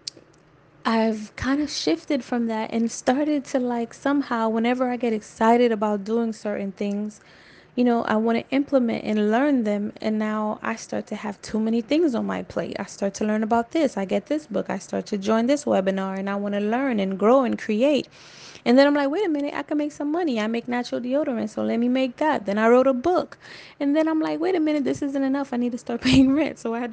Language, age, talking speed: English, 10-29, 245 wpm